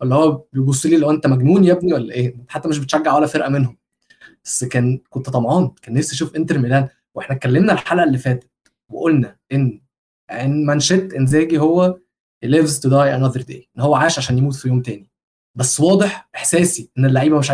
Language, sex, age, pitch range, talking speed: Arabic, male, 20-39, 130-165 Hz, 190 wpm